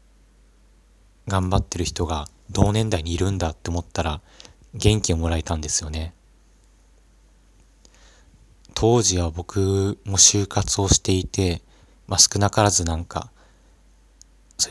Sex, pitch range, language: male, 80-95 Hz, Japanese